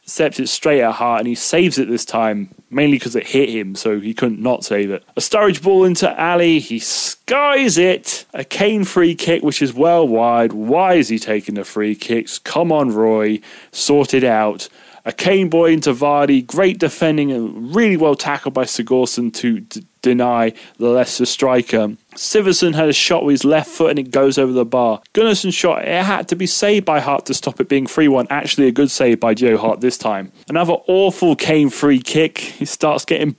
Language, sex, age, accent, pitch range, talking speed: English, male, 20-39, British, 125-170 Hz, 210 wpm